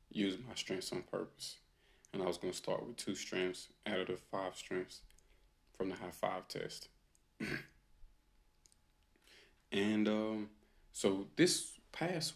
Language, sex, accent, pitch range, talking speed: English, male, American, 75-100 Hz, 140 wpm